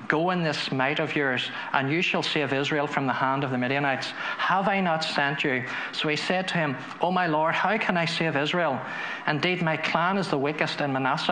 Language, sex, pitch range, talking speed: English, male, 135-165 Hz, 230 wpm